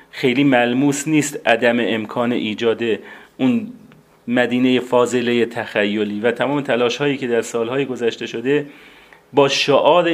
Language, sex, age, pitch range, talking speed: Persian, male, 30-49, 120-145 Hz, 125 wpm